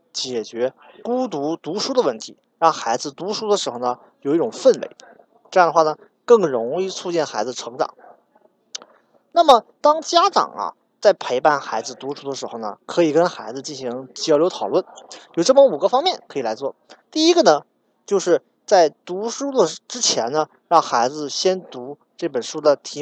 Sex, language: male, Chinese